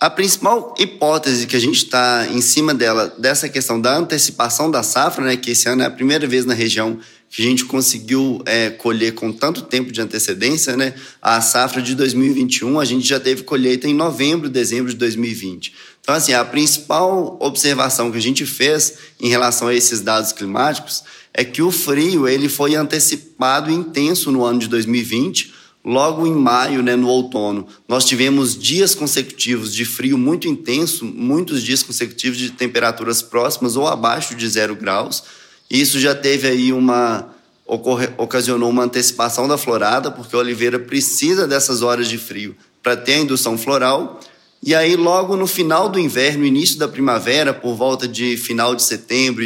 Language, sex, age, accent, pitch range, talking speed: Portuguese, male, 20-39, Brazilian, 120-140 Hz, 175 wpm